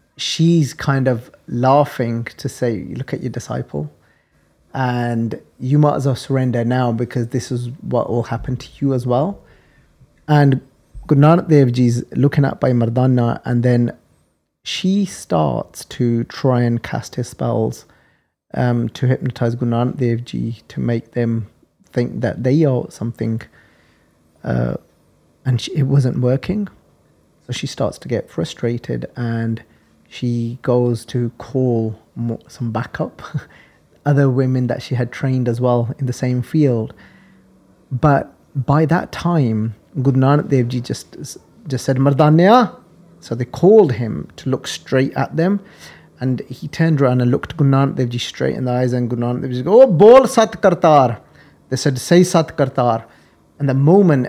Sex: male